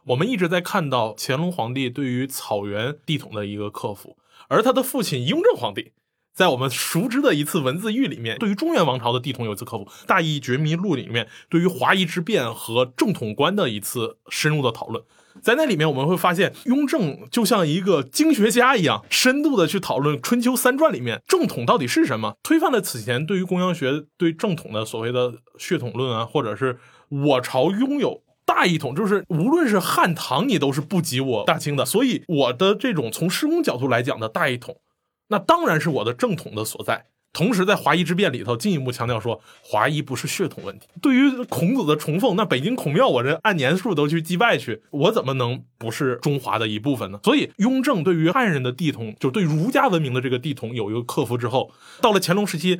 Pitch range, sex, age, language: 130-200 Hz, male, 20-39, Chinese